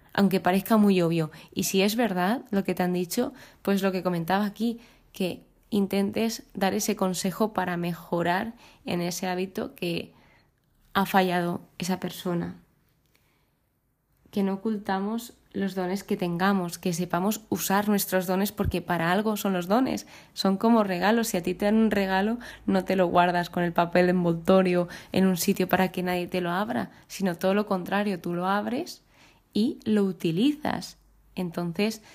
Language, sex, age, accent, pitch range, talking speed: Spanish, female, 20-39, Spanish, 180-205 Hz, 170 wpm